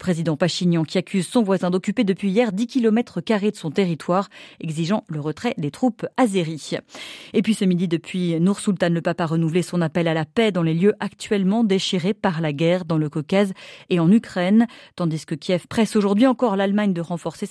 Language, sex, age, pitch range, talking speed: French, female, 30-49, 165-215 Hz, 205 wpm